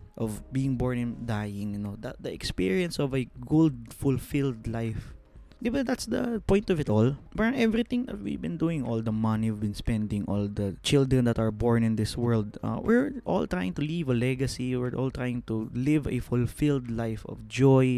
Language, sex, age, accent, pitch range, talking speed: English, male, 20-39, Filipino, 110-150 Hz, 205 wpm